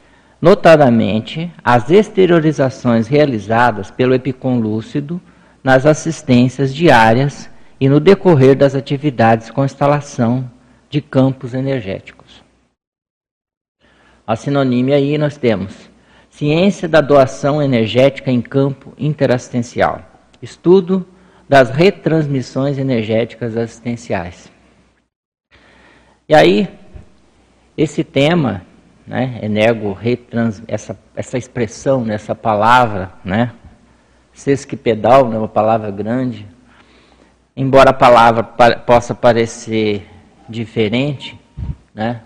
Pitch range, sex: 115-140 Hz, male